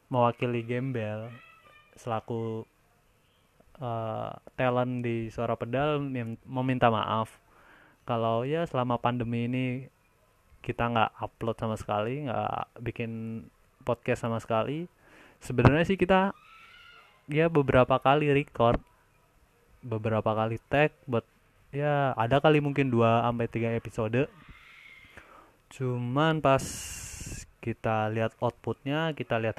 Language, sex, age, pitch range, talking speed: Indonesian, male, 20-39, 110-130 Hz, 100 wpm